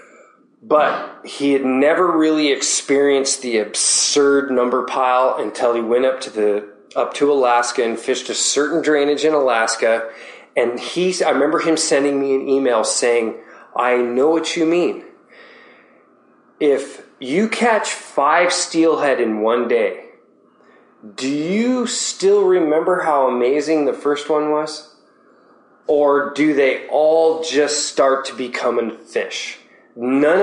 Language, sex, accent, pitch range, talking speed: English, male, American, 135-200 Hz, 135 wpm